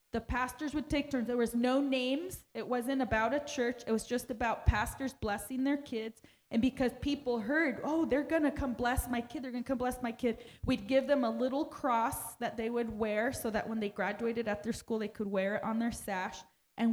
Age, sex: 20-39, female